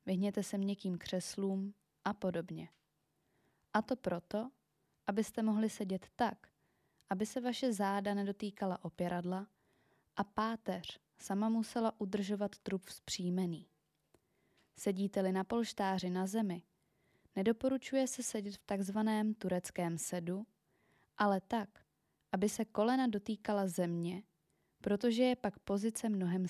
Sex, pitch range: female, 185-220 Hz